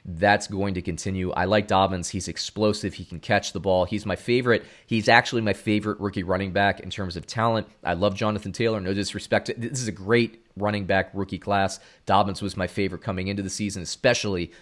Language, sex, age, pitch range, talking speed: English, male, 30-49, 95-120 Hz, 215 wpm